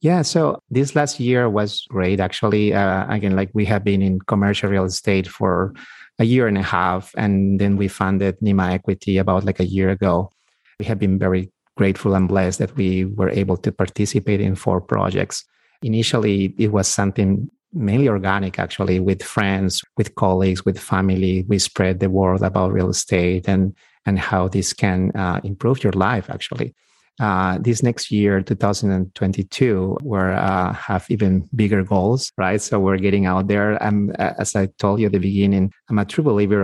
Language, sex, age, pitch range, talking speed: English, male, 30-49, 95-105 Hz, 180 wpm